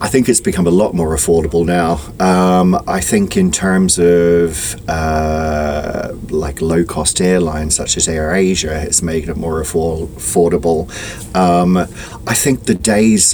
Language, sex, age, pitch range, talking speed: English, male, 30-49, 85-110 Hz, 155 wpm